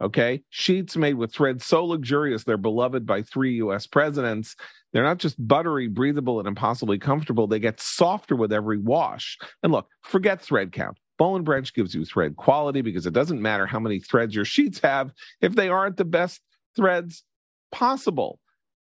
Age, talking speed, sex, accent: 40-59, 175 wpm, male, American